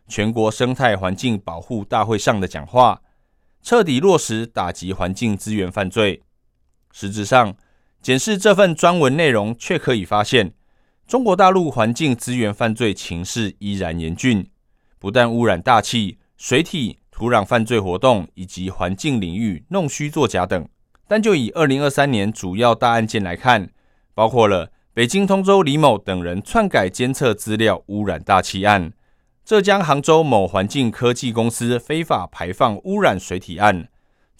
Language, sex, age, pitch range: Chinese, male, 20-39, 95-130 Hz